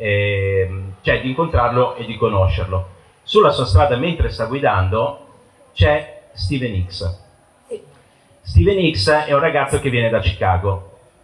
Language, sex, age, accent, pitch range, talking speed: Italian, male, 40-59, native, 95-125 Hz, 130 wpm